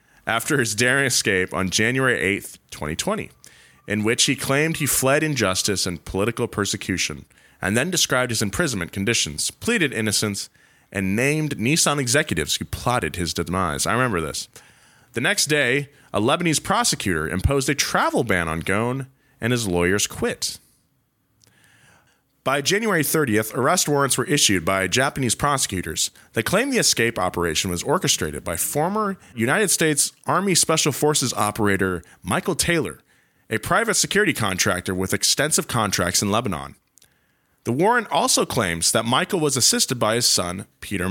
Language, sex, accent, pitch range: English, male, American, 95-145 Hz